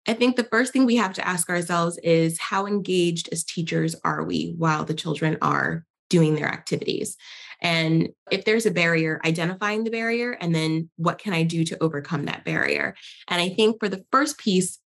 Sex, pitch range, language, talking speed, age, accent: female, 180-245 Hz, English, 200 wpm, 20-39, American